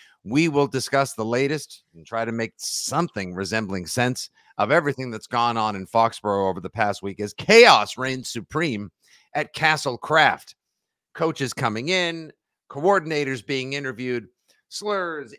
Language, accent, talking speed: English, American, 145 wpm